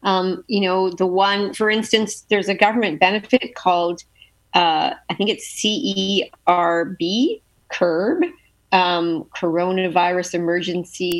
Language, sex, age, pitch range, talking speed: English, female, 40-59, 170-205 Hz, 105 wpm